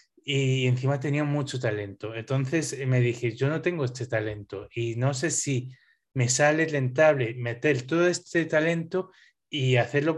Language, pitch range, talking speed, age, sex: Spanish, 125-155 Hz, 155 wpm, 20-39, male